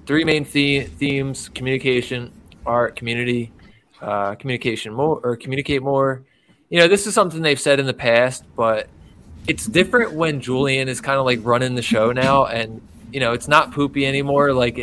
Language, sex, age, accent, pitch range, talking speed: English, male, 20-39, American, 120-145 Hz, 180 wpm